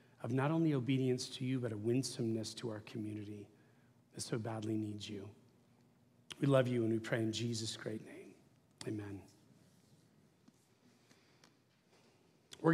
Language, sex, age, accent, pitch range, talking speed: English, male, 40-59, American, 120-145 Hz, 135 wpm